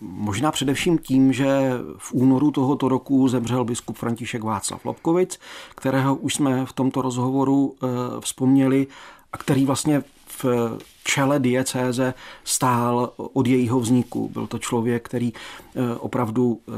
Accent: native